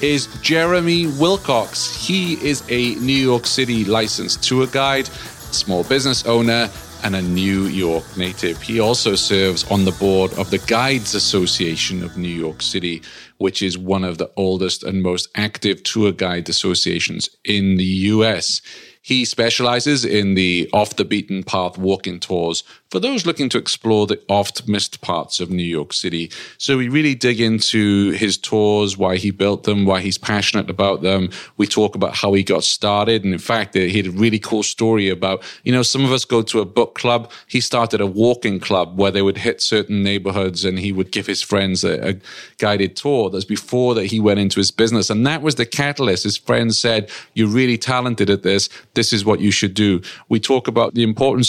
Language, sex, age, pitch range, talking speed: English, male, 30-49, 95-120 Hz, 190 wpm